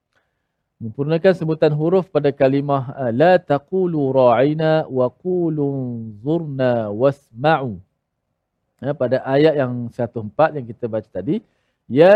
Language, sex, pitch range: Malayalam, male, 130-160 Hz